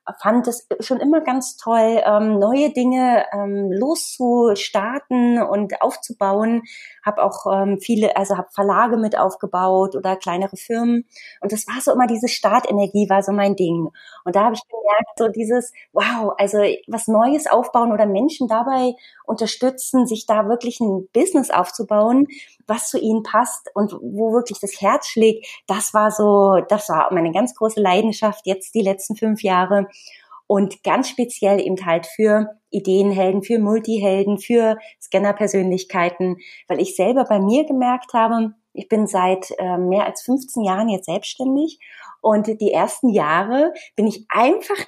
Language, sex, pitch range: German, female, 200-245 Hz